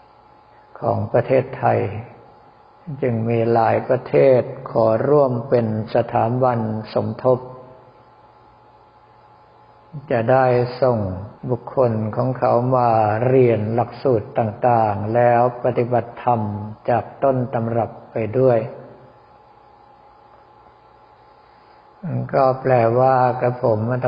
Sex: male